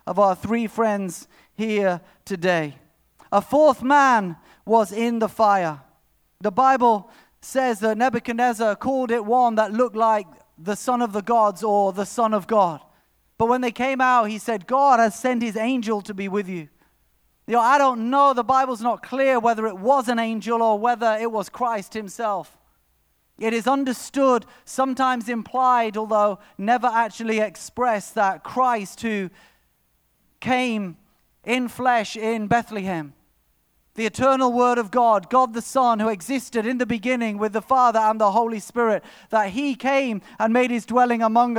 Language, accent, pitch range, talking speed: English, British, 210-250 Hz, 165 wpm